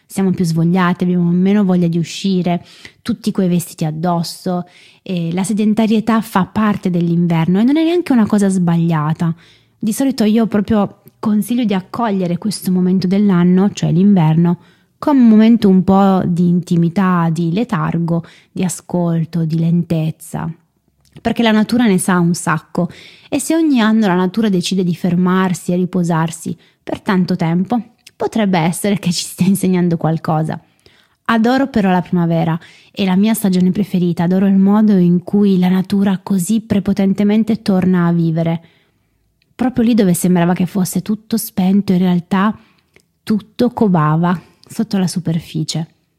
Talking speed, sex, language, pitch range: 150 wpm, female, Italian, 170-205 Hz